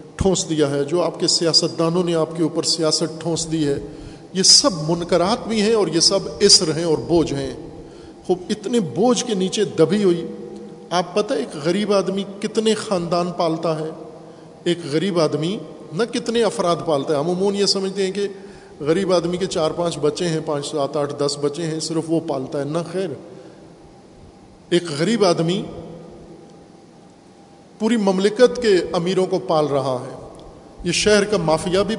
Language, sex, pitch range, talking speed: Urdu, male, 160-200 Hz, 175 wpm